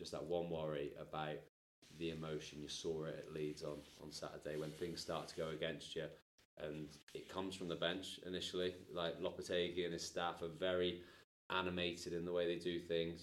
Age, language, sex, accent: 20-39, English, male, British